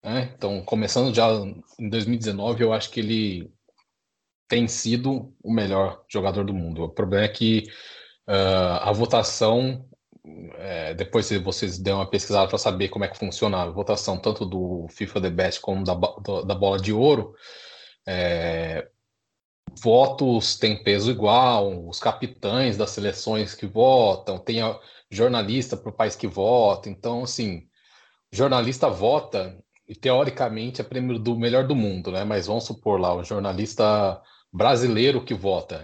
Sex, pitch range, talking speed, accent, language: male, 100-125 Hz, 155 wpm, Brazilian, Portuguese